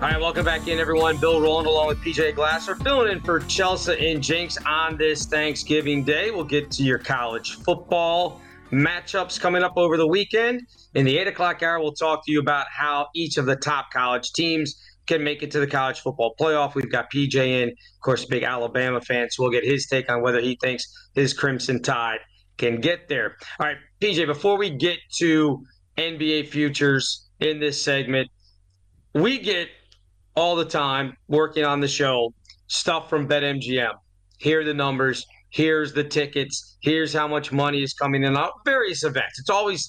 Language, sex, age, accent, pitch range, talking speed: English, male, 30-49, American, 130-160 Hz, 190 wpm